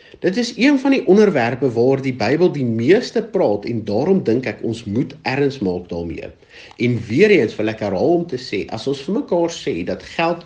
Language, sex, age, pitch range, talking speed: English, male, 50-69, 105-150 Hz, 210 wpm